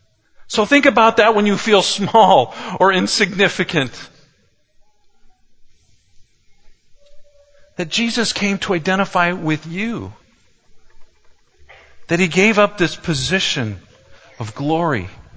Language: English